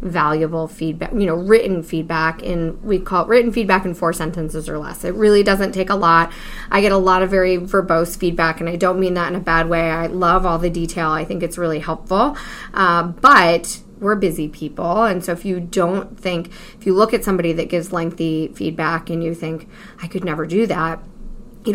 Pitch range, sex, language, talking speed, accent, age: 165-200 Hz, female, English, 220 wpm, American, 20-39